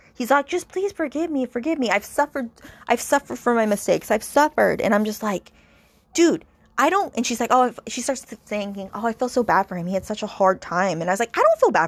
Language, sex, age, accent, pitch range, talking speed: English, female, 20-39, American, 180-255 Hz, 265 wpm